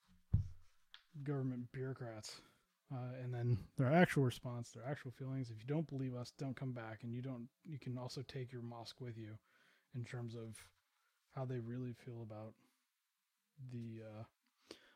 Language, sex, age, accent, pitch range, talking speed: English, male, 20-39, American, 115-130 Hz, 160 wpm